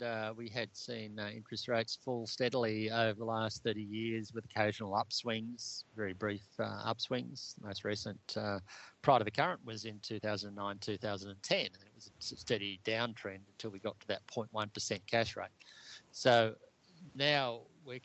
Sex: male